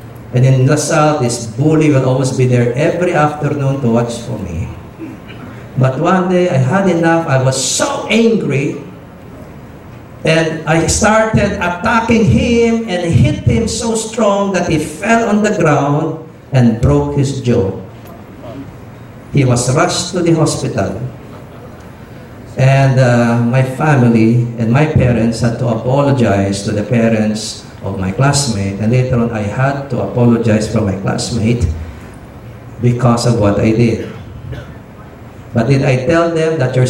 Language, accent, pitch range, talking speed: English, Filipino, 115-160 Hz, 145 wpm